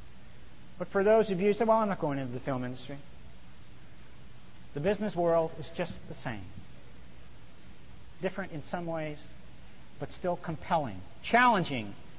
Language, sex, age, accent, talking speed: English, male, 50-69, American, 150 wpm